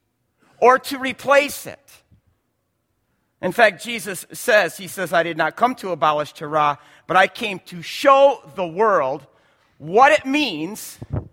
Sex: male